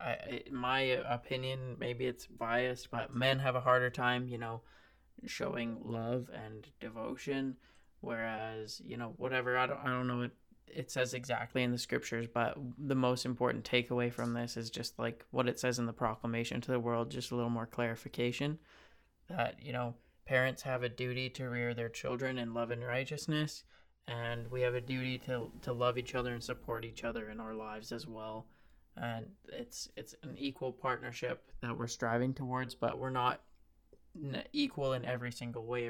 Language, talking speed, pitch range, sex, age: English, 180 wpm, 115-130 Hz, male, 20-39